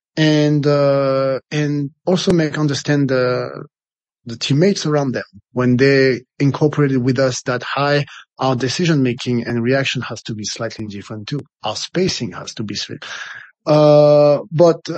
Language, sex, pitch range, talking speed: French, male, 130-160 Hz, 150 wpm